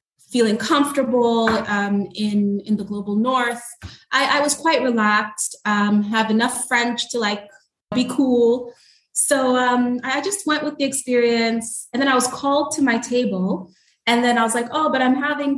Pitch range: 205-265 Hz